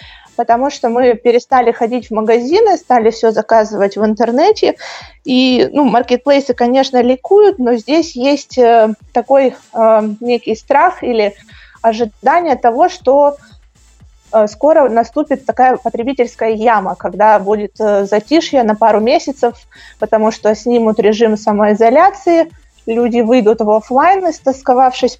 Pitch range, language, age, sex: 225-265 Hz, Russian, 20-39, female